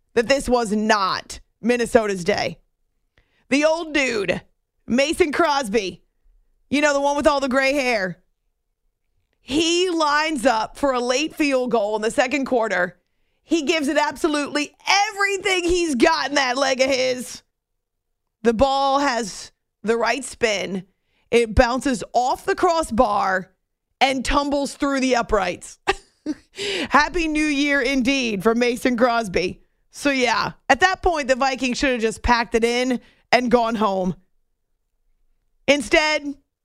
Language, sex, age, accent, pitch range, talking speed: English, female, 30-49, American, 230-290 Hz, 140 wpm